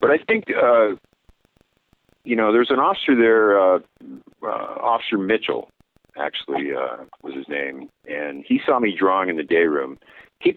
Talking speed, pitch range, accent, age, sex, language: 165 wpm, 75-105 Hz, American, 50-69, male, English